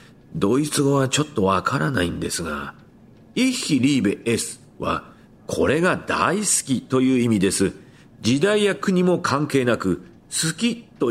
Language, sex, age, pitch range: Japanese, male, 40-59, 110-175 Hz